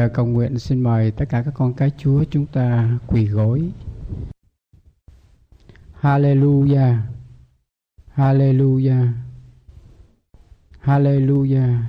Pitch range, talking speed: 115-145 Hz, 85 wpm